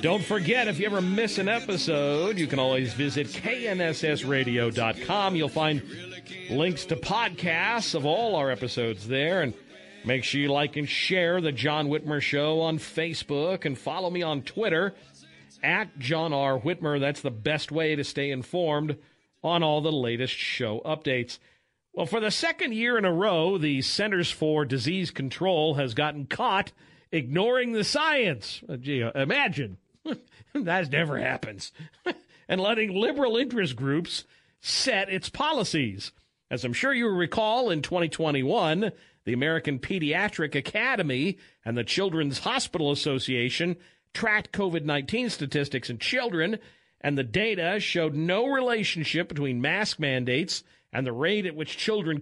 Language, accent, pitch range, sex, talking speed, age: English, American, 140-205 Hz, male, 145 wpm, 50-69